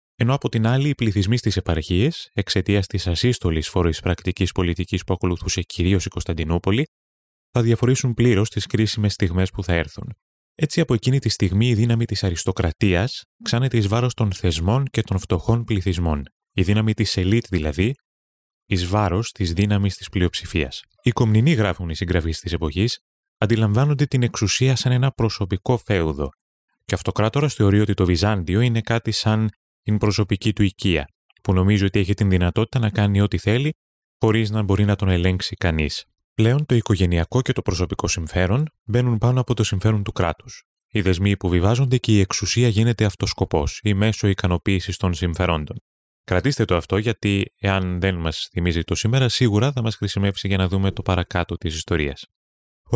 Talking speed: 170 wpm